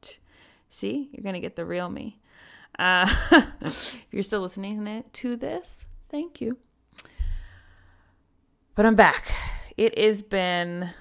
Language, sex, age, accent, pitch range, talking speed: English, female, 20-39, American, 155-210 Hz, 125 wpm